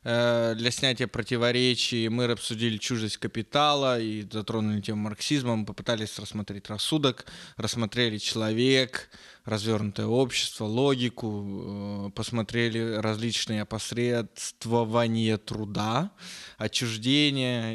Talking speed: 80 wpm